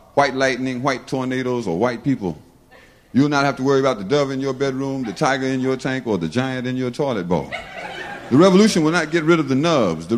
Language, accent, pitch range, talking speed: English, American, 115-140 Hz, 235 wpm